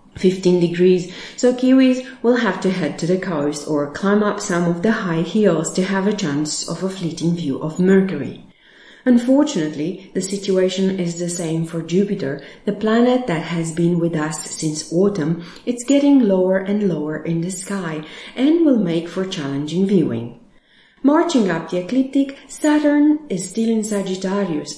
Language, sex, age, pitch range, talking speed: English, female, 40-59, 170-225 Hz, 165 wpm